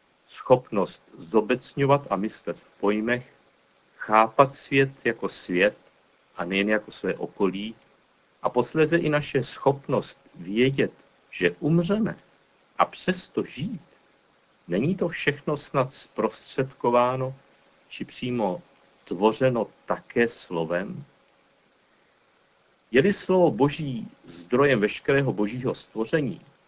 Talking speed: 95 wpm